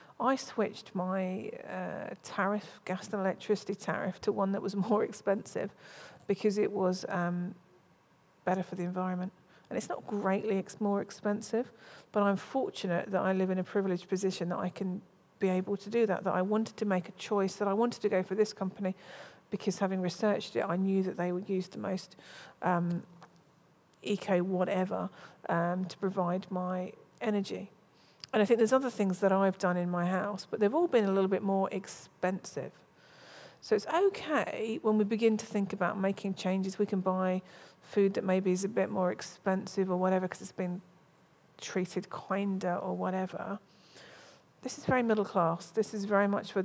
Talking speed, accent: 185 wpm, British